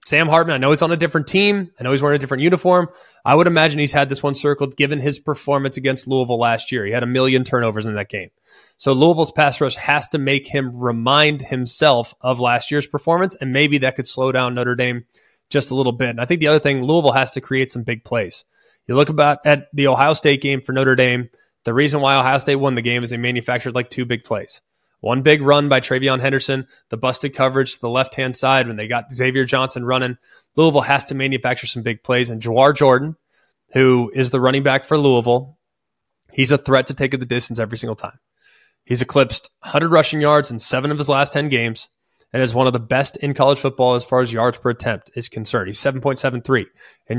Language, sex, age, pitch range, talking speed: English, male, 20-39, 125-145 Hz, 235 wpm